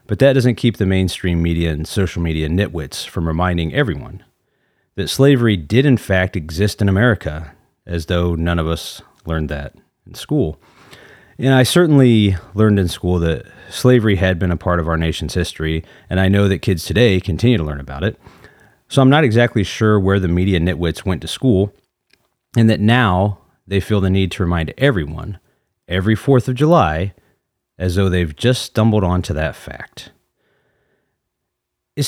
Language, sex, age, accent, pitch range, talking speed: English, male, 30-49, American, 85-115 Hz, 175 wpm